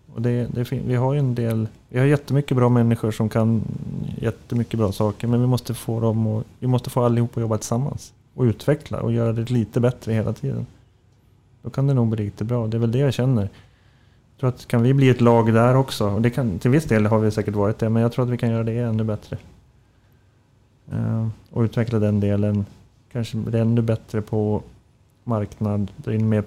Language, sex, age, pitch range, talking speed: Swedish, male, 30-49, 110-125 Hz, 220 wpm